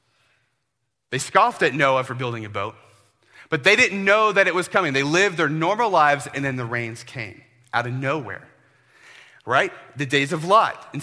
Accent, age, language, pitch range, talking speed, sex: American, 30-49, English, 120-195 Hz, 190 wpm, male